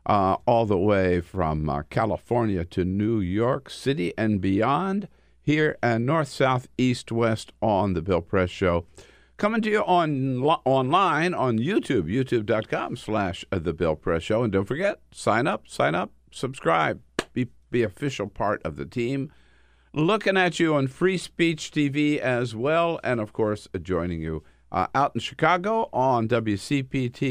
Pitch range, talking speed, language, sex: 85-125 Hz, 160 wpm, English, male